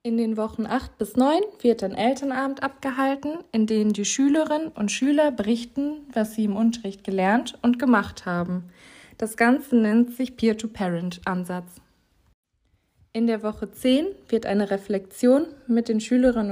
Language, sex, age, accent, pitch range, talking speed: German, female, 20-39, German, 210-265 Hz, 145 wpm